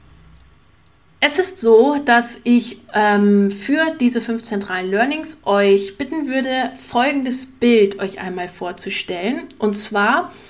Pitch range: 200-245 Hz